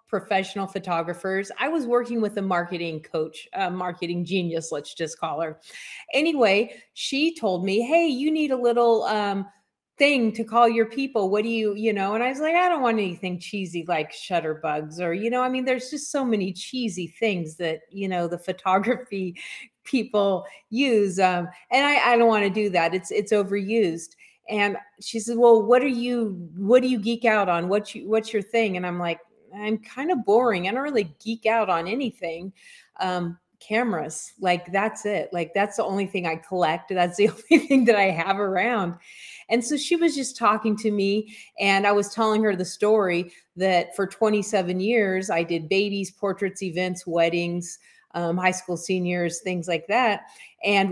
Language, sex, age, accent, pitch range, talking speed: English, female, 30-49, American, 180-230 Hz, 195 wpm